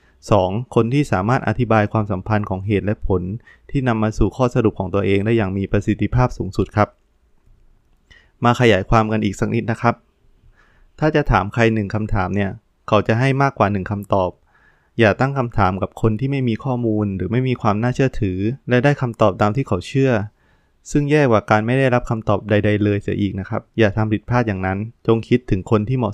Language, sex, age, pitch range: Thai, male, 20-39, 100-120 Hz